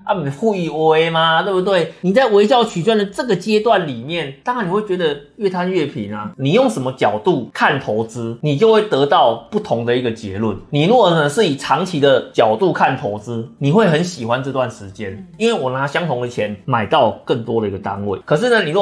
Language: Chinese